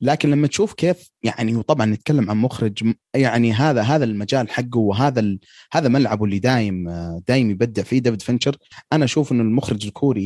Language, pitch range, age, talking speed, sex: Arabic, 105-135 Hz, 30-49, 170 wpm, male